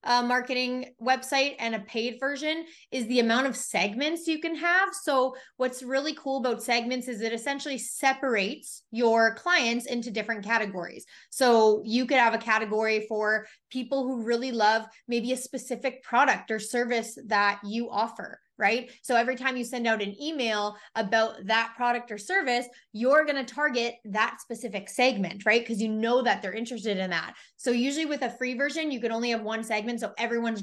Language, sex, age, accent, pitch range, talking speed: English, female, 20-39, American, 220-255 Hz, 180 wpm